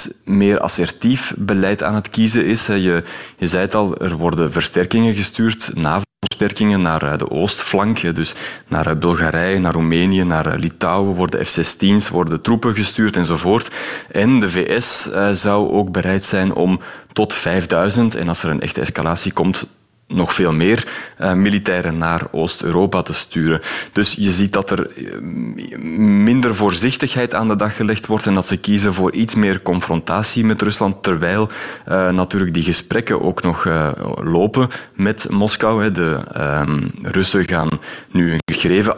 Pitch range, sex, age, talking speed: 85-105 Hz, male, 30-49, 155 wpm